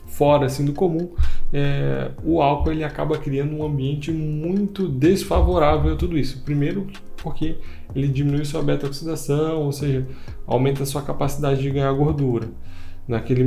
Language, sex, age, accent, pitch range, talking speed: Portuguese, male, 10-29, Brazilian, 125-150 Hz, 145 wpm